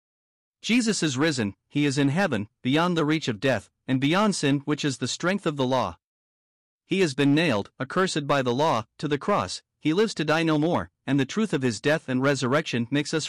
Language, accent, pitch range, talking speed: English, American, 135-175 Hz, 220 wpm